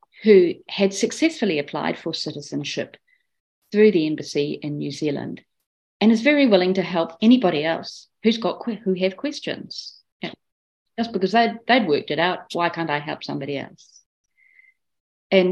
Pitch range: 150-195 Hz